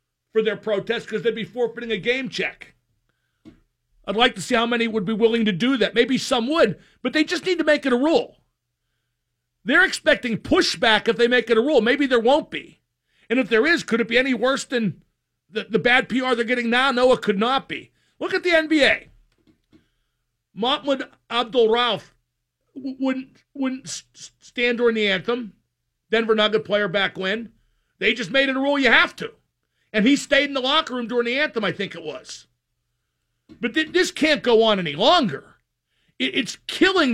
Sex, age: male, 50-69